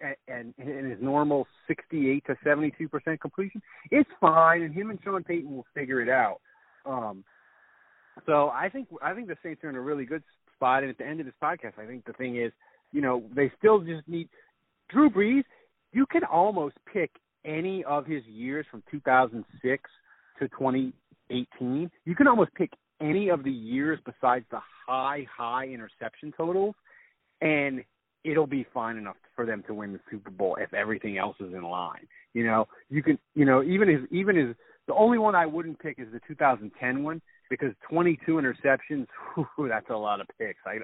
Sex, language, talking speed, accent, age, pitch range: male, English, 185 wpm, American, 30-49, 125-185 Hz